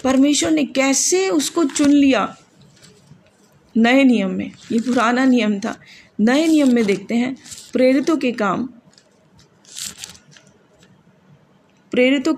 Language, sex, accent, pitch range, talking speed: English, female, Indian, 230-280 Hz, 105 wpm